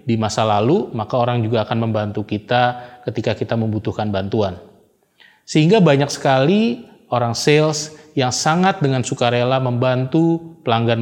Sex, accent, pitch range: male, native, 110-145 Hz